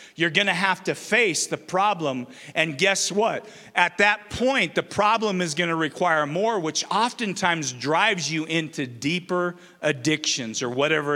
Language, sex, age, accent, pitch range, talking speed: English, male, 40-59, American, 150-210 Hz, 160 wpm